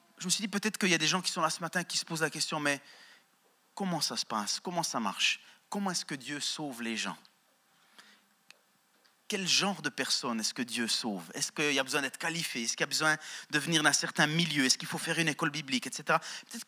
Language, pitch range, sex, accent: French, 155-185 Hz, male, French